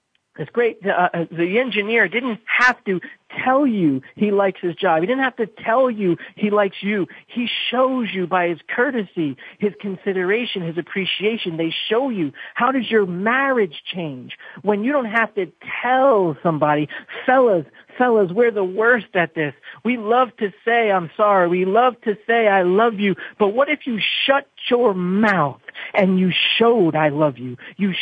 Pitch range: 155-225 Hz